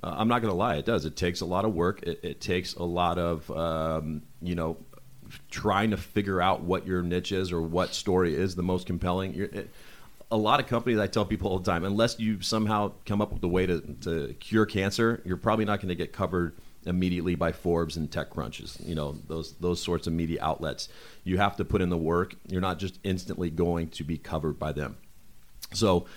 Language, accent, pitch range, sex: English, American, 85-100 Hz, male